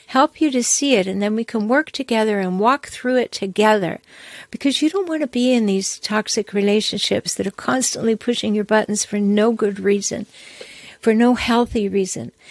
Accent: American